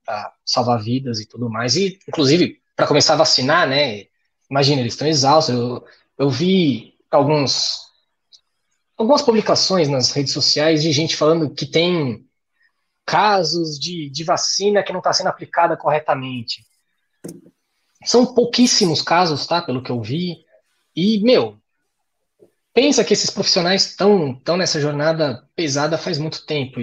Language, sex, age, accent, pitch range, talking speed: Portuguese, male, 20-39, Brazilian, 130-180 Hz, 140 wpm